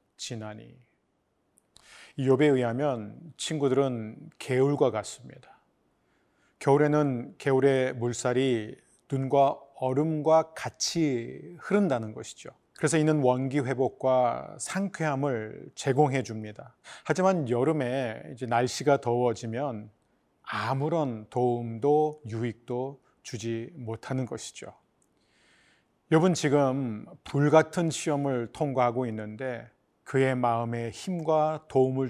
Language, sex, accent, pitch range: Korean, male, native, 120-150 Hz